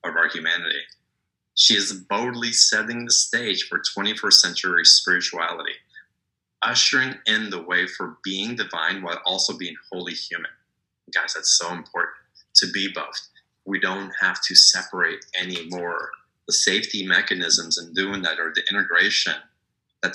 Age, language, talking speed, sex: 30-49, English, 145 wpm, male